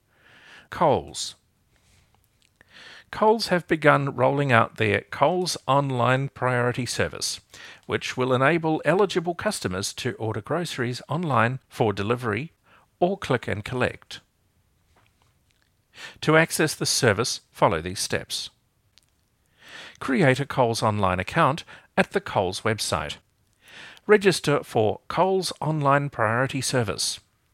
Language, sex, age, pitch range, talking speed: English, male, 50-69, 110-150 Hz, 105 wpm